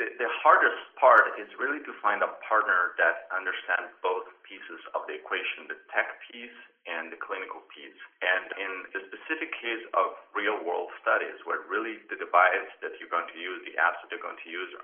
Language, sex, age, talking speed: English, male, 30-49, 195 wpm